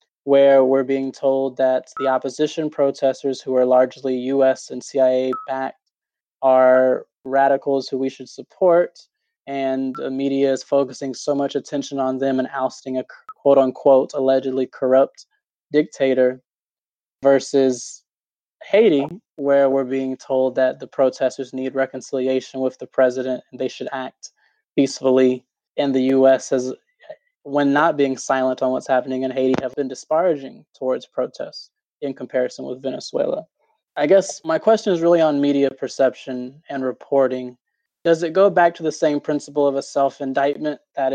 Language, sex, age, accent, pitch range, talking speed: English, male, 20-39, American, 130-140 Hz, 145 wpm